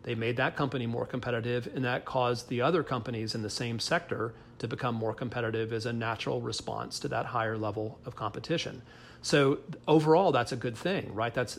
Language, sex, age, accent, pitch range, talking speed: English, male, 40-59, American, 115-135 Hz, 195 wpm